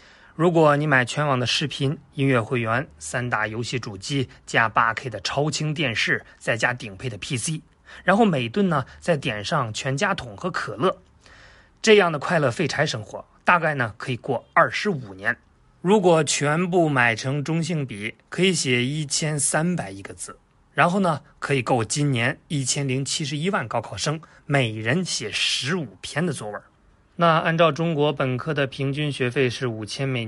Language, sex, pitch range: Chinese, male, 120-170 Hz